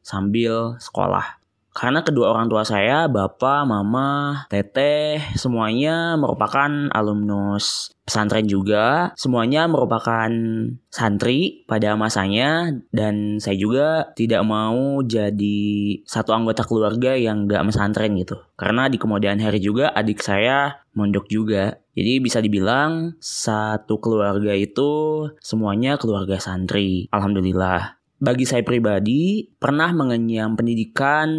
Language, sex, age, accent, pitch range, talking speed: Indonesian, male, 20-39, native, 105-135 Hz, 110 wpm